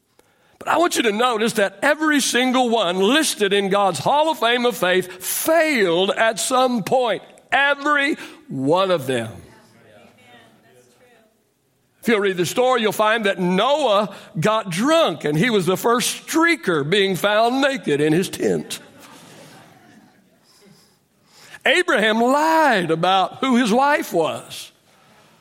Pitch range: 185-265 Hz